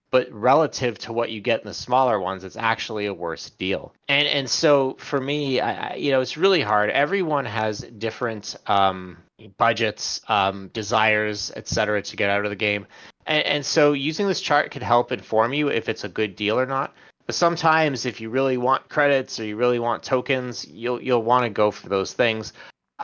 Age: 30-49